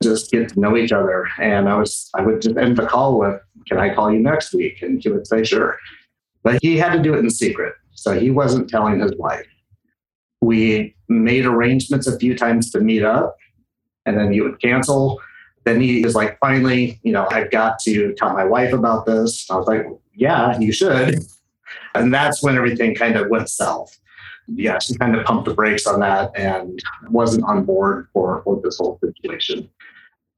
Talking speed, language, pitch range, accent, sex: 200 wpm, English, 110-140 Hz, American, male